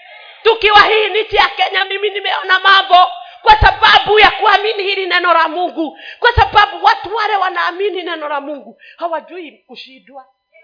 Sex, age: female, 40-59